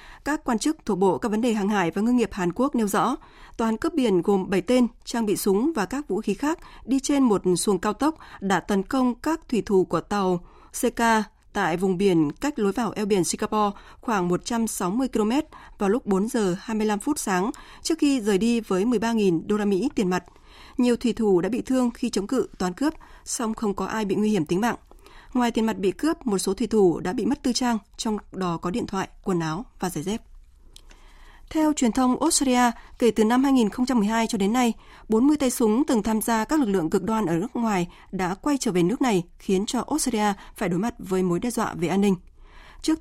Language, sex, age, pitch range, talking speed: Vietnamese, female, 20-39, 190-245 Hz, 230 wpm